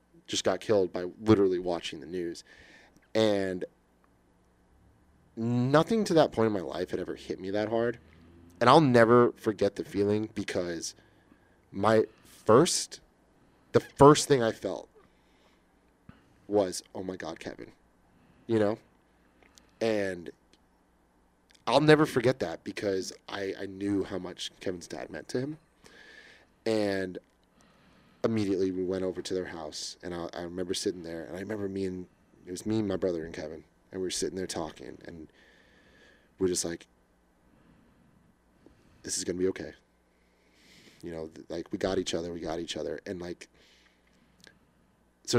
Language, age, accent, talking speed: English, 30-49, American, 155 wpm